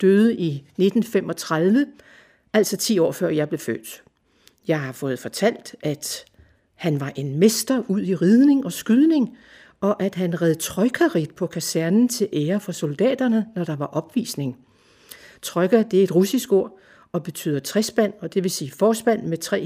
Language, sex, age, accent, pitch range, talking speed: Danish, female, 60-79, native, 160-220 Hz, 170 wpm